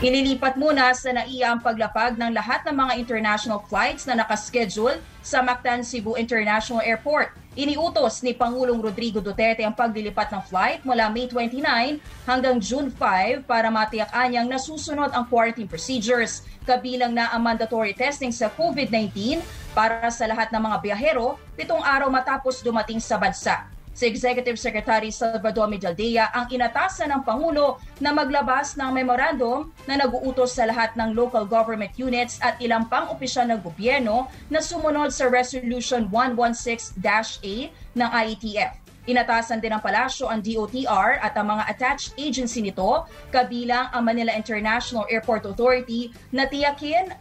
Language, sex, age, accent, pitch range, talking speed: English, female, 20-39, Filipino, 225-260 Hz, 145 wpm